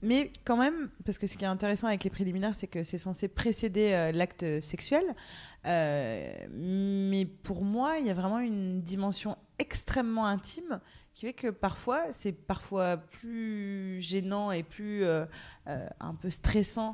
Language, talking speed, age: French, 165 wpm, 30-49